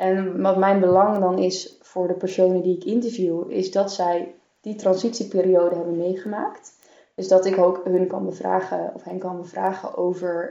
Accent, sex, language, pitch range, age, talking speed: Dutch, female, Dutch, 170-190 Hz, 20-39, 175 wpm